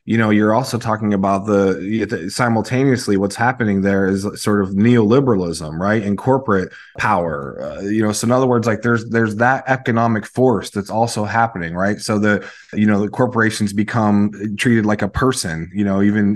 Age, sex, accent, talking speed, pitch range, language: 20-39, male, American, 185 wpm, 105-120 Hz, English